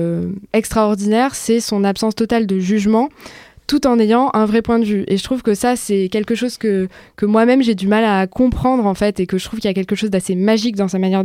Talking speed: 250 wpm